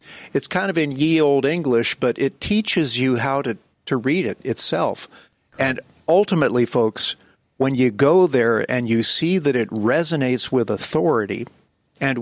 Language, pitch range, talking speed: English, 115-140 Hz, 160 wpm